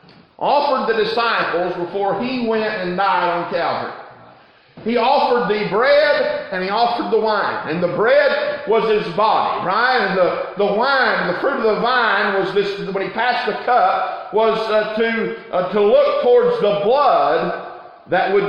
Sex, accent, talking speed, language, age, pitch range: male, American, 170 wpm, English, 50-69, 220-275 Hz